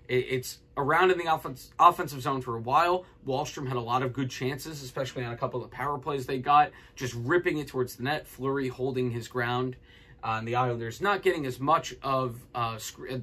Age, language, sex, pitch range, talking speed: 20-39, English, male, 120-155 Hz, 215 wpm